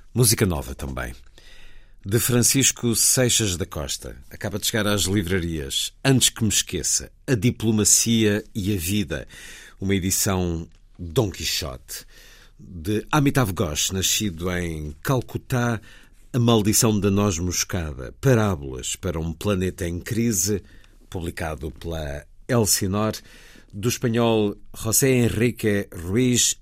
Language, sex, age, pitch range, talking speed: Portuguese, male, 50-69, 90-115 Hz, 115 wpm